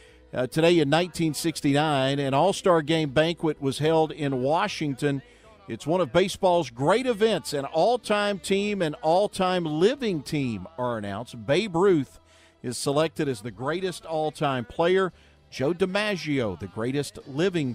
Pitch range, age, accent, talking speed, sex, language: 125-170 Hz, 50-69, American, 140 wpm, male, English